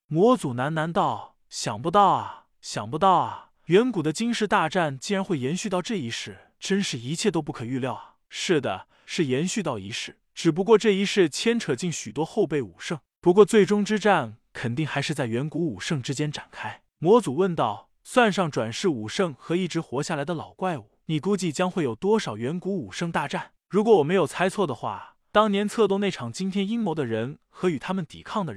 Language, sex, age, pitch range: Chinese, male, 20-39, 145-205 Hz